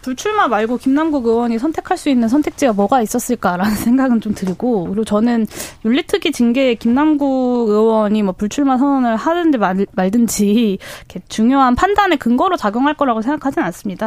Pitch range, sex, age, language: 220-295 Hz, female, 20-39, Korean